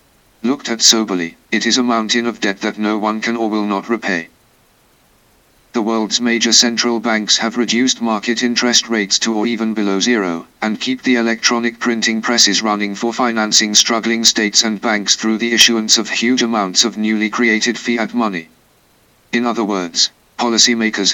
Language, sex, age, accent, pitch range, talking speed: English, male, 50-69, British, 110-120 Hz, 170 wpm